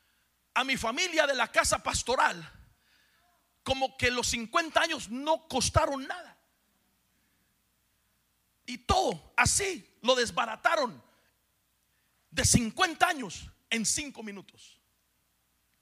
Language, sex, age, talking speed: Spanish, male, 50-69, 100 wpm